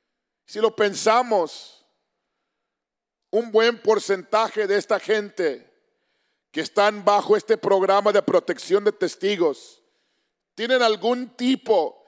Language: English